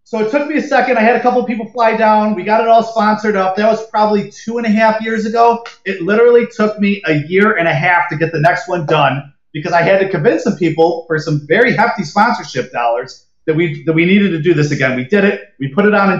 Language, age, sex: English, 30-49, male